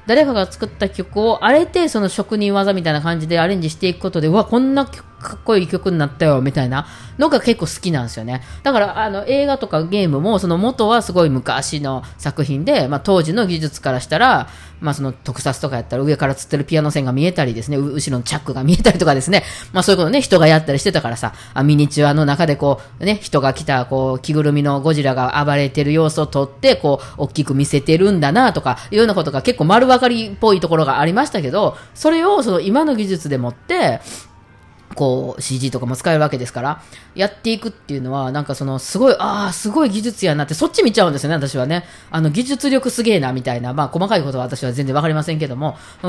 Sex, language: female, Japanese